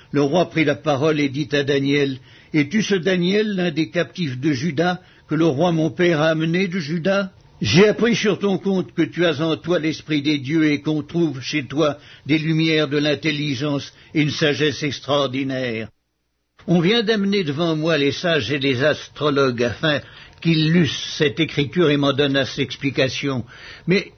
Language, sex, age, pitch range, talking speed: French, male, 60-79, 135-170 Hz, 190 wpm